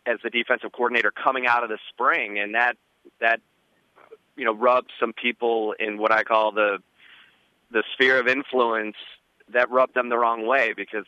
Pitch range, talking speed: 105-115 Hz, 180 wpm